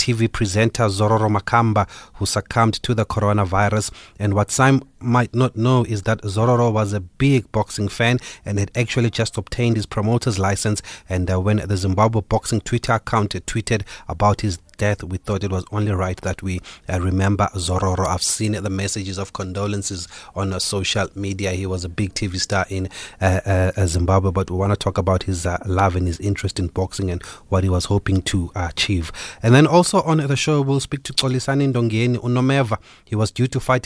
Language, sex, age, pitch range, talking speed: English, male, 30-49, 95-115 Hz, 200 wpm